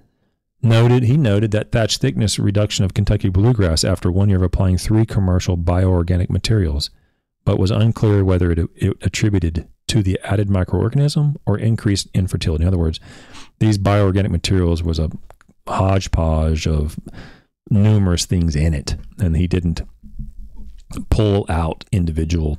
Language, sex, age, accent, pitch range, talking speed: English, male, 40-59, American, 80-105 Hz, 140 wpm